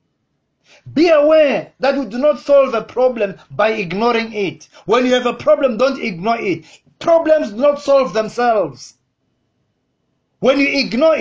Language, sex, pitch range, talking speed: English, male, 160-265 Hz, 150 wpm